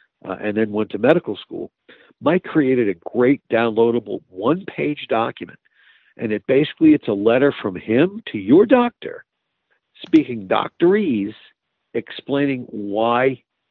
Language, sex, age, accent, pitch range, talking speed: English, male, 50-69, American, 115-175 Hz, 125 wpm